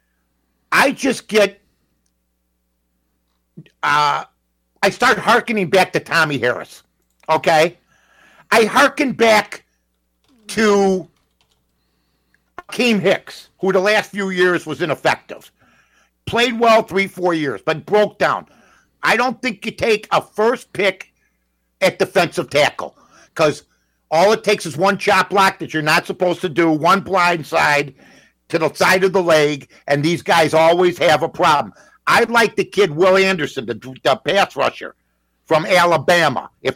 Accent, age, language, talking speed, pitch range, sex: American, 60-79, English, 140 wpm, 145-205 Hz, male